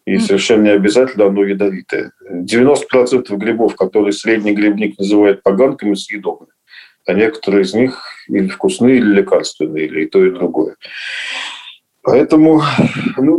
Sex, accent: male, native